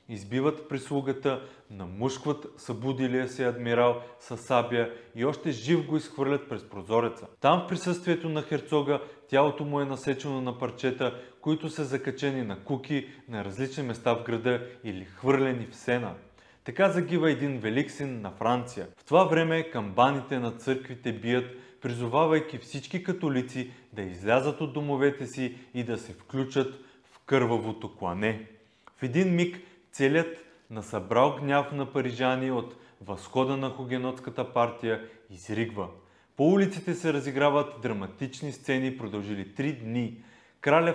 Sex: male